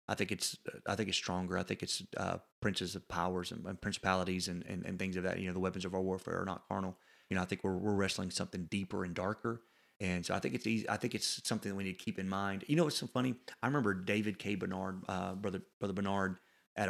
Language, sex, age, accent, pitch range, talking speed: English, male, 30-49, American, 95-115 Hz, 270 wpm